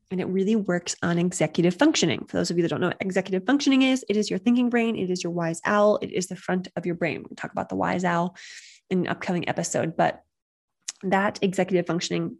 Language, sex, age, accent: English, female, 20-39, American